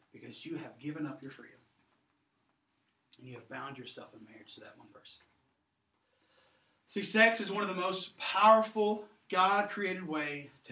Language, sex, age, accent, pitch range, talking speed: English, male, 40-59, American, 140-200 Hz, 160 wpm